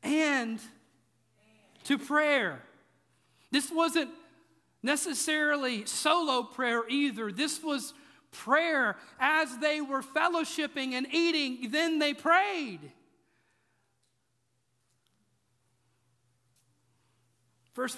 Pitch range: 215-275 Hz